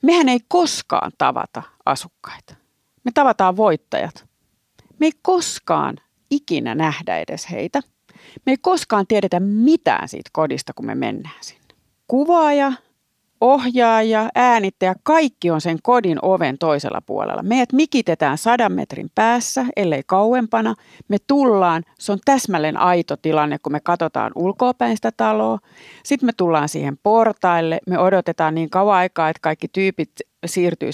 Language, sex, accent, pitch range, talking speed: Finnish, female, native, 155-225 Hz, 135 wpm